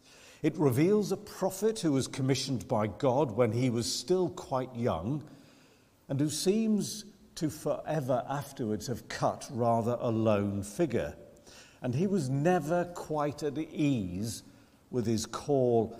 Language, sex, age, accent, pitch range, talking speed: English, male, 50-69, British, 110-150 Hz, 140 wpm